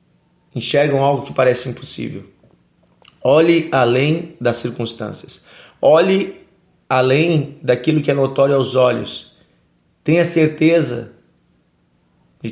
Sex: male